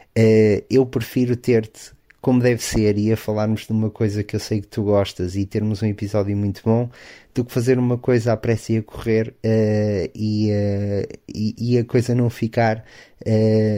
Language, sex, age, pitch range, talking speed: Portuguese, male, 20-39, 100-110 Hz, 195 wpm